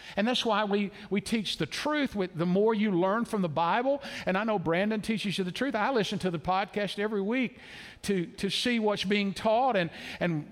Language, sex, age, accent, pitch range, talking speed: English, male, 50-69, American, 165-230 Hz, 220 wpm